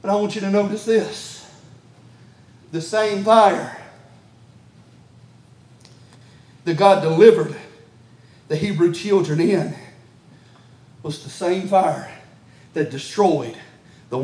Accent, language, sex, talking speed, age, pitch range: American, English, male, 100 wpm, 40-59, 140-220 Hz